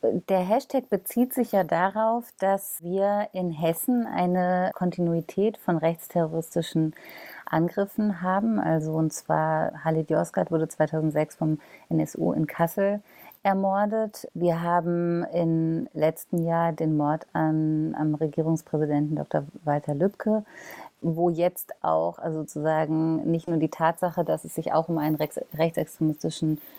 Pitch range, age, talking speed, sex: 155-175 Hz, 30-49, 130 wpm, female